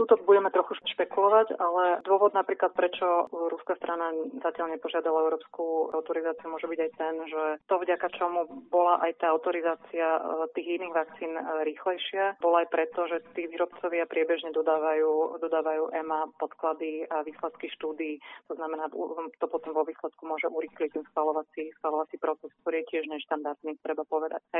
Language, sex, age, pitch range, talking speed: Slovak, female, 30-49, 155-170 Hz, 150 wpm